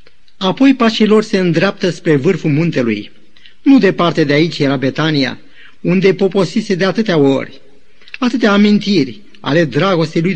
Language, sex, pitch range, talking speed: Romanian, male, 150-200 Hz, 140 wpm